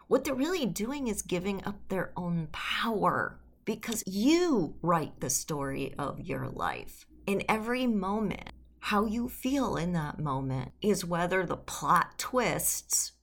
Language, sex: English, female